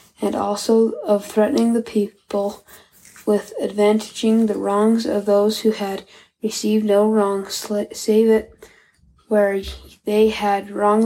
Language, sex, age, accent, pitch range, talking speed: English, female, 10-29, American, 200-220 Hz, 125 wpm